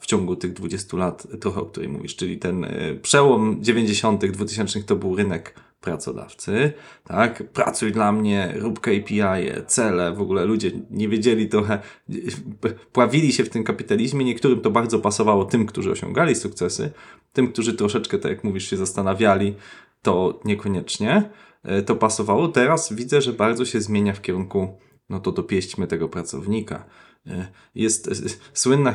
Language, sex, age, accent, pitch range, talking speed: Polish, male, 20-39, native, 95-120 Hz, 150 wpm